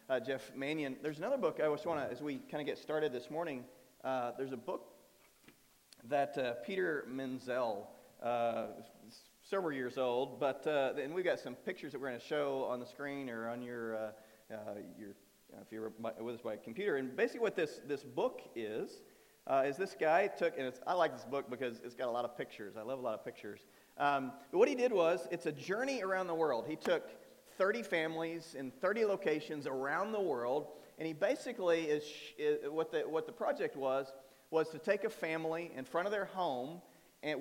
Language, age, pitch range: English, 40-59, 130-180 Hz